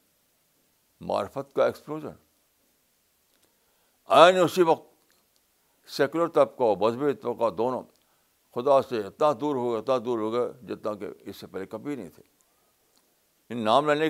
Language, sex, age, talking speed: Urdu, male, 60-79, 135 wpm